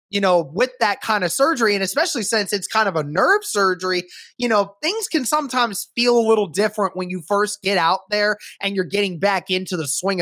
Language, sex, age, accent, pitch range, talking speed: English, male, 20-39, American, 170-210 Hz, 225 wpm